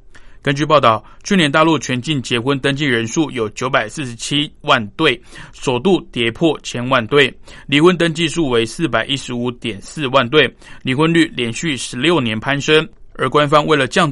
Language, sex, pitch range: Chinese, male, 120-155 Hz